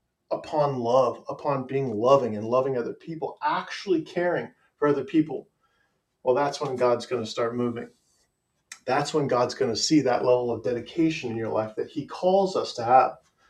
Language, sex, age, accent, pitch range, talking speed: English, male, 40-59, American, 125-150 Hz, 175 wpm